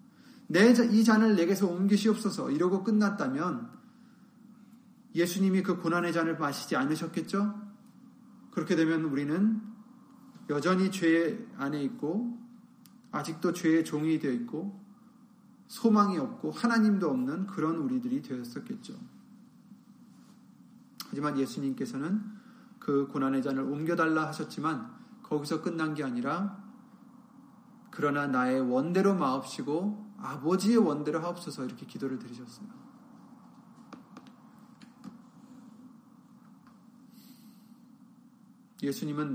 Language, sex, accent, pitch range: Korean, male, native, 170-235 Hz